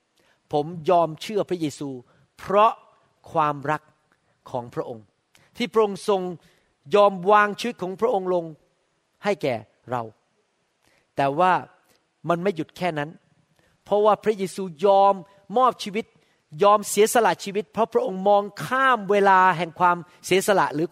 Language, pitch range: Thai, 170-235 Hz